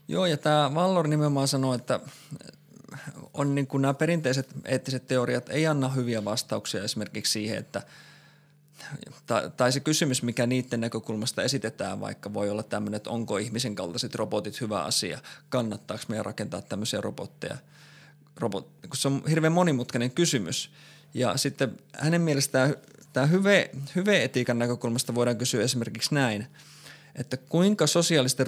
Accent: native